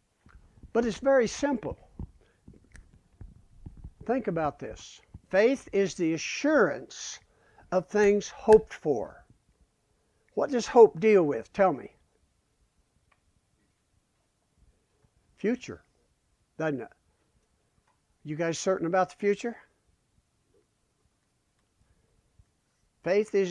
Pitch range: 140-210 Hz